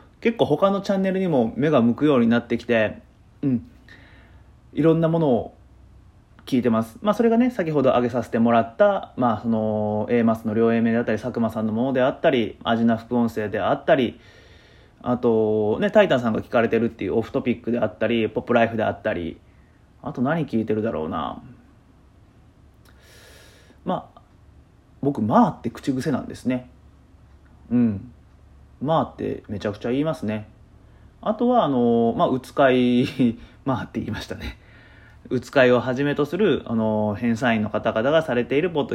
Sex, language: male, Japanese